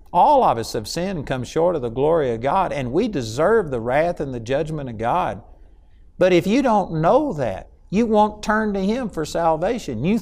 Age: 60-79